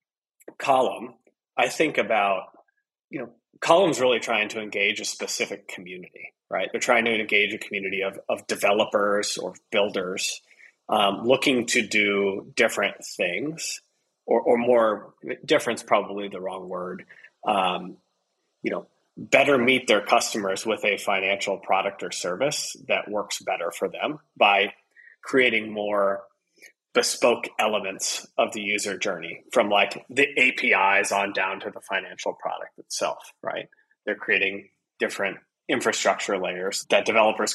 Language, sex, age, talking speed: English, male, 30-49, 135 wpm